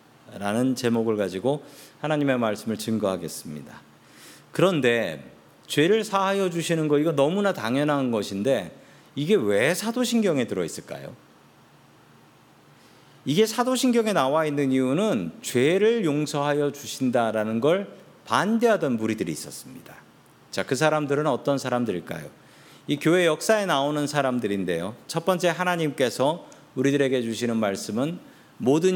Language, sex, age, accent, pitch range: Korean, male, 40-59, native, 125-185 Hz